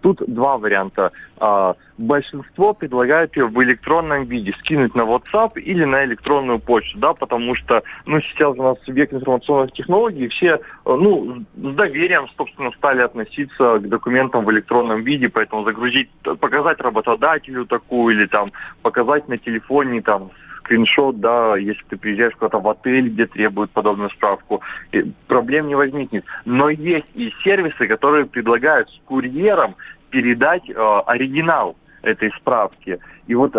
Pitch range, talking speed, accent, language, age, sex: 115-145 Hz, 140 wpm, native, Russian, 20-39, male